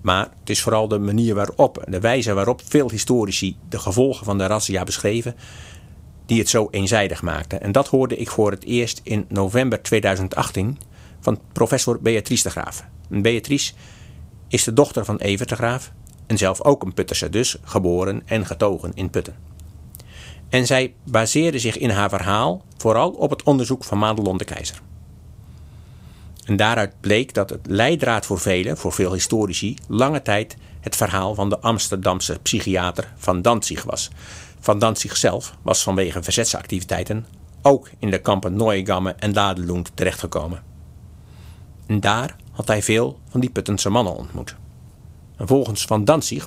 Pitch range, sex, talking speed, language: 95-115 Hz, male, 160 wpm, Dutch